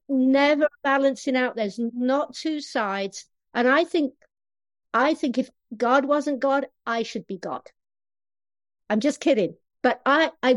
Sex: female